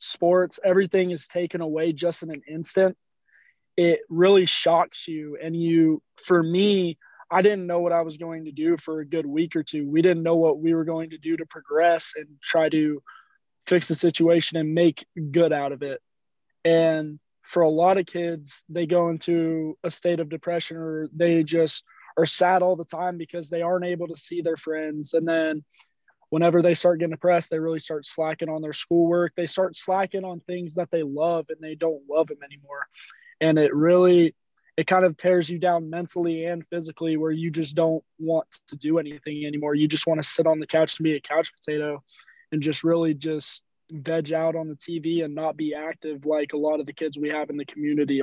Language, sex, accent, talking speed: English, male, American, 210 wpm